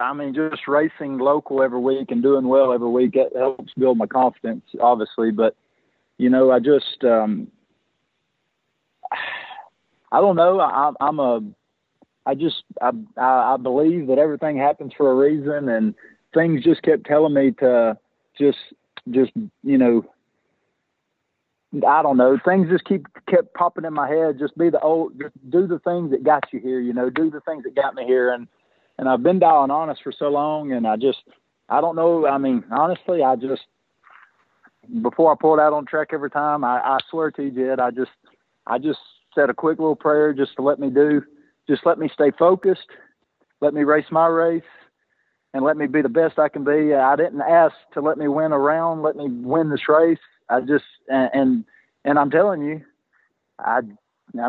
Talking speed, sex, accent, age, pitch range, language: 190 wpm, male, American, 40-59, 130-160 Hz, English